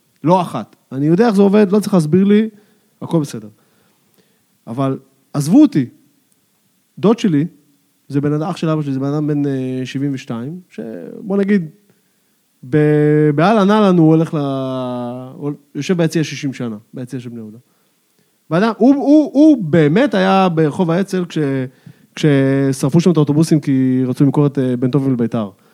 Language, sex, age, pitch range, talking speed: Hebrew, male, 20-39, 145-210 Hz, 150 wpm